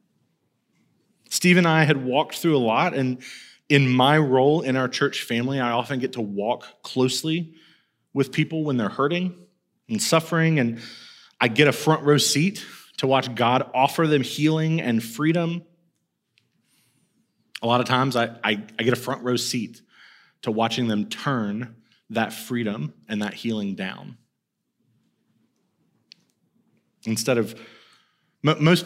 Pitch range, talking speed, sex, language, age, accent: 110-155 Hz, 145 wpm, male, English, 30-49, American